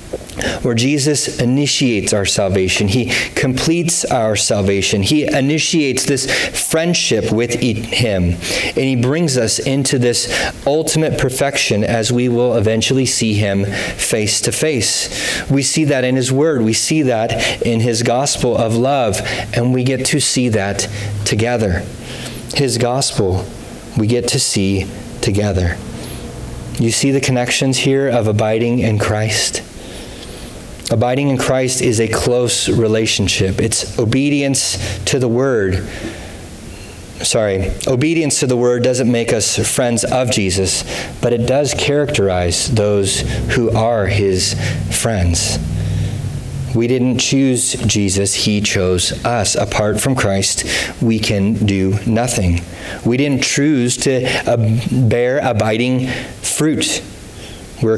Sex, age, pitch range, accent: male, 30-49, 100-130 Hz, American